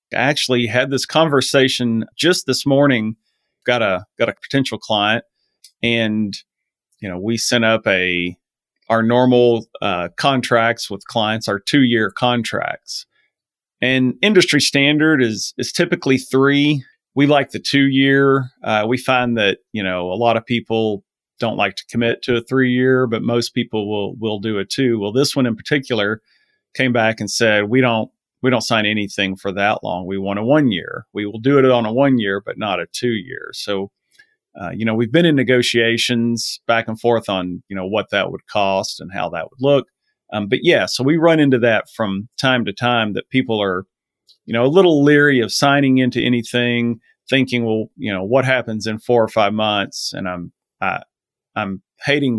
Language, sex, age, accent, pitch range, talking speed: English, male, 40-59, American, 110-130 Hz, 190 wpm